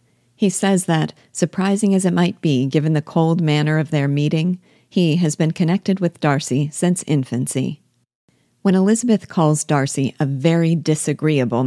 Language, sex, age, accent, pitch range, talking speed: English, female, 50-69, American, 145-170 Hz, 155 wpm